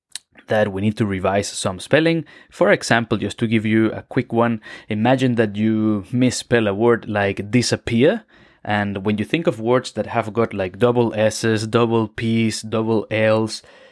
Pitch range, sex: 105-125 Hz, male